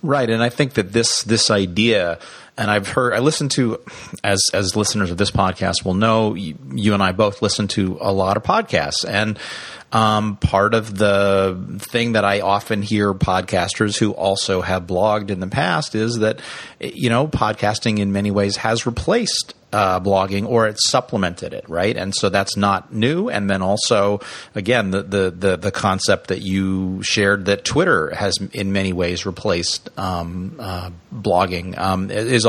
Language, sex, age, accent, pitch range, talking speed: English, male, 40-59, American, 95-110 Hz, 180 wpm